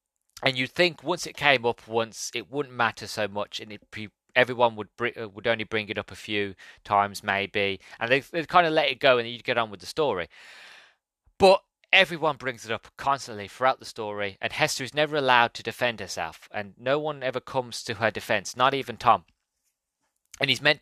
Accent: British